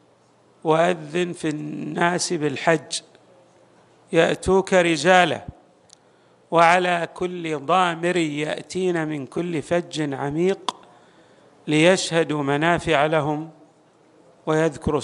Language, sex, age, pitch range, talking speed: Arabic, male, 50-69, 150-175 Hz, 70 wpm